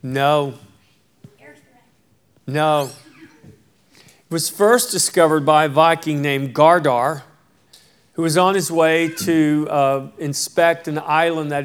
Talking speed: 115 wpm